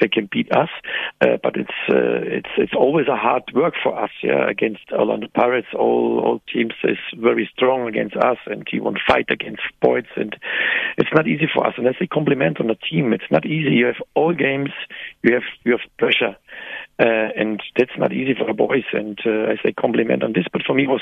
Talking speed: 230 wpm